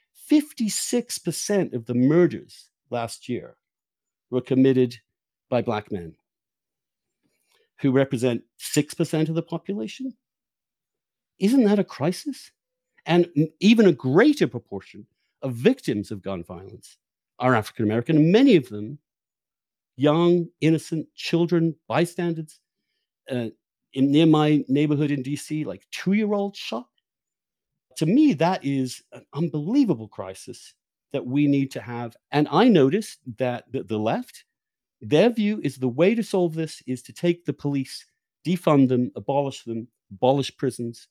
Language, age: English, 50-69